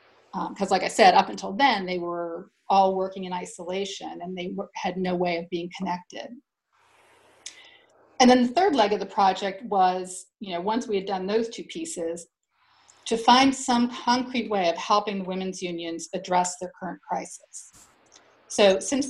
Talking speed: 175 wpm